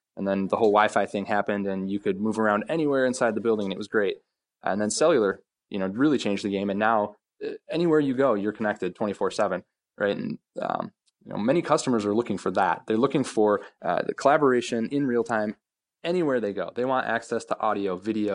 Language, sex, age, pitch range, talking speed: English, male, 20-39, 100-140 Hz, 215 wpm